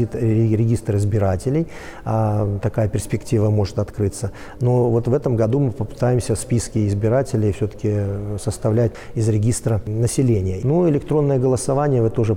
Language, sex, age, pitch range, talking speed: Russian, male, 40-59, 105-125 Hz, 125 wpm